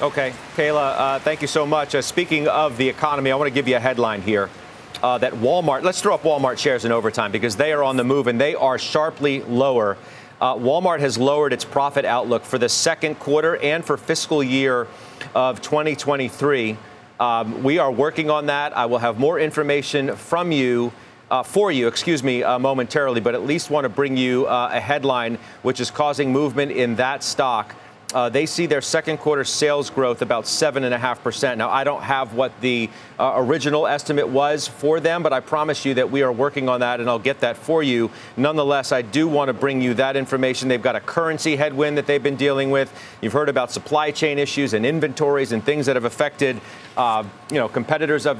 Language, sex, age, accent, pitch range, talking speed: English, male, 40-59, American, 125-150 Hz, 210 wpm